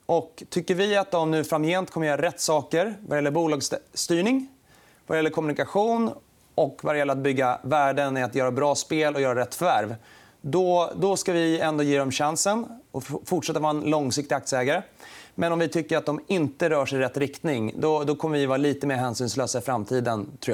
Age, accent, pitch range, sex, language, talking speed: 30-49, native, 135-165 Hz, male, Swedish, 200 wpm